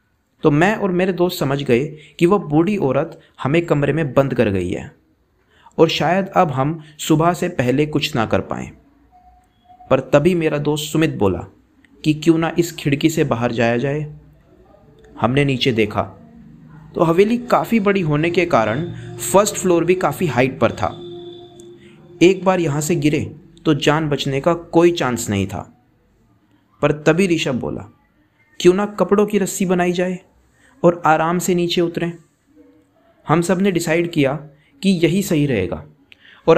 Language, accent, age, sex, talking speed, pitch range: Hindi, native, 30-49, male, 165 wpm, 140-180 Hz